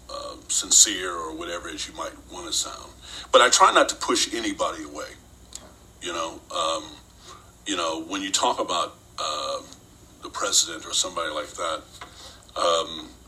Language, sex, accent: English, male, American